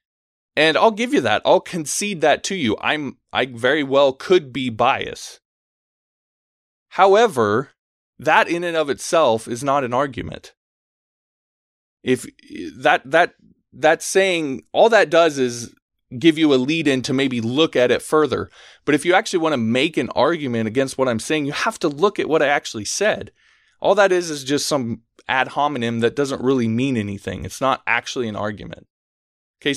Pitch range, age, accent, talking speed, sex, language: 110-155 Hz, 20-39, American, 175 wpm, male, English